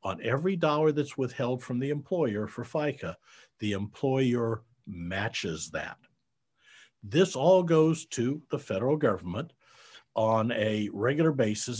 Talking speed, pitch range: 125 wpm, 105-145 Hz